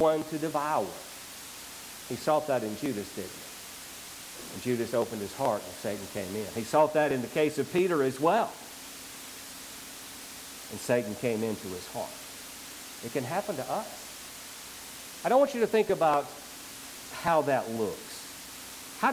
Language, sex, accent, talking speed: English, male, American, 160 wpm